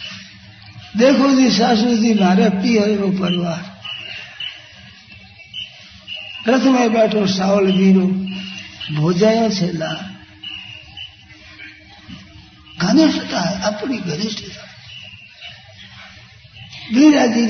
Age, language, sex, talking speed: 60-79, Hindi, male, 55 wpm